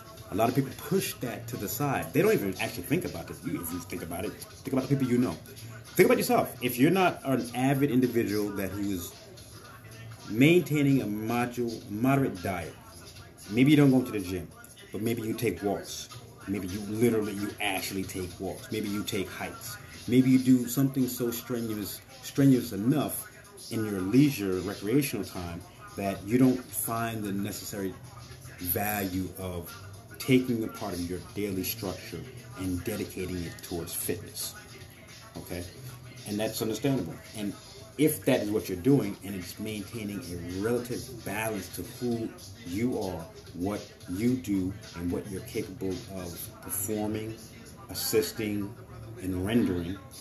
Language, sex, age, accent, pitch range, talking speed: English, male, 30-49, American, 95-125 Hz, 155 wpm